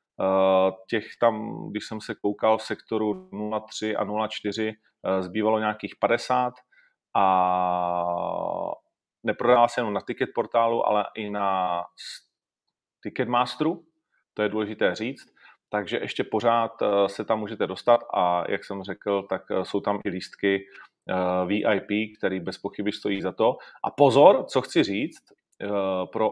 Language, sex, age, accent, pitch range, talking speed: Czech, male, 30-49, native, 95-110 Hz, 130 wpm